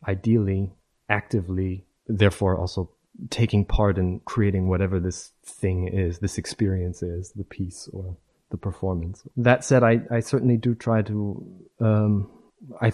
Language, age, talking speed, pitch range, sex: English, 30-49, 140 wpm, 90-110 Hz, male